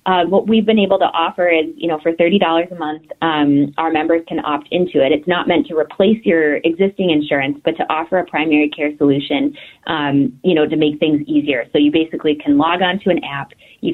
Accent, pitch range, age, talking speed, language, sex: American, 150-180 Hz, 20-39, 230 wpm, English, female